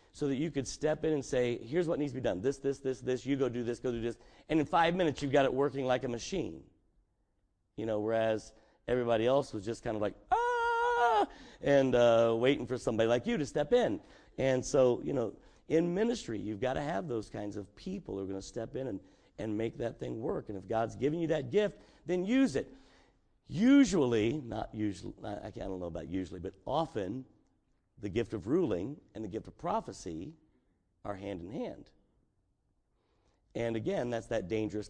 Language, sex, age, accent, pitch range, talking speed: English, male, 50-69, American, 105-135 Hz, 205 wpm